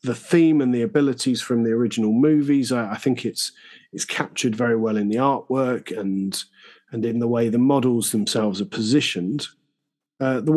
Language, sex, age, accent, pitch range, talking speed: English, male, 40-59, British, 110-140 Hz, 180 wpm